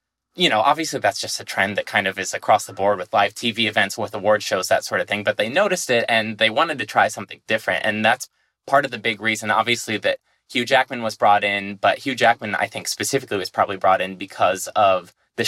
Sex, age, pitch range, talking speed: male, 20-39, 105-125 Hz, 245 wpm